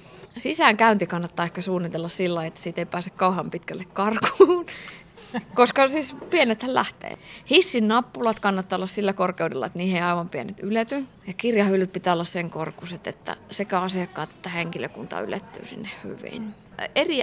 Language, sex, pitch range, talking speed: Finnish, female, 165-220 Hz, 145 wpm